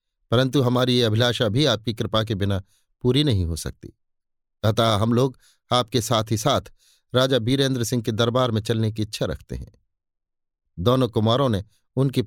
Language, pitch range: Hindi, 105-135 Hz